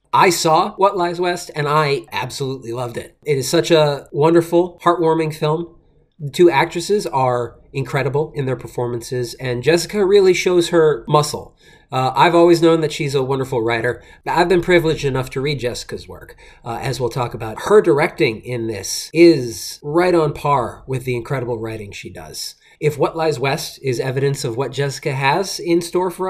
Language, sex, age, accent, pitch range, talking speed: English, male, 30-49, American, 130-170 Hz, 185 wpm